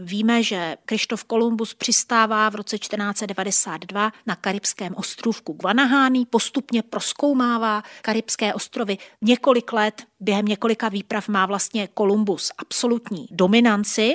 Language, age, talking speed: Czech, 30-49, 110 wpm